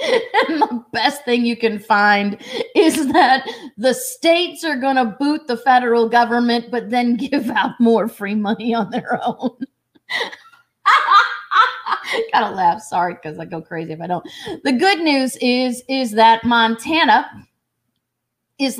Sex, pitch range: female, 225-330 Hz